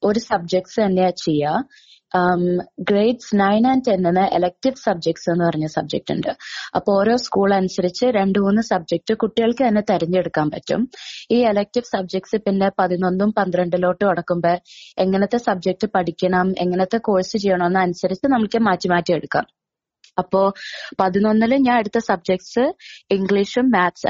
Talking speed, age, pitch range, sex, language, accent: 120 wpm, 20-39, 180-220 Hz, female, Malayalam, native